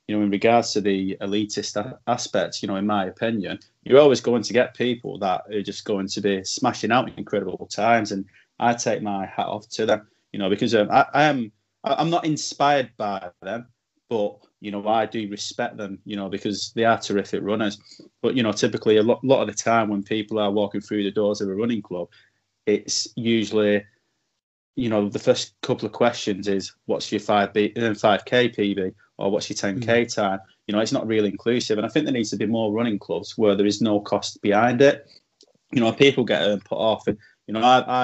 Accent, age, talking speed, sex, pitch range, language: British, 20-39, 220 wpm, male, 100-115 Hz, English